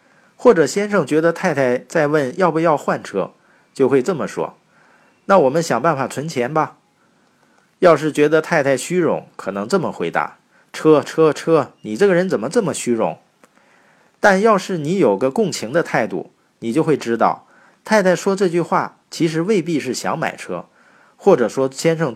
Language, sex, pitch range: Chinese, male, 130-185 Hz